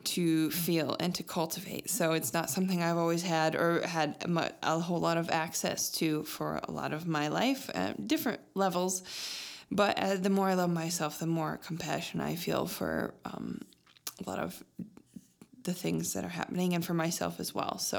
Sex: female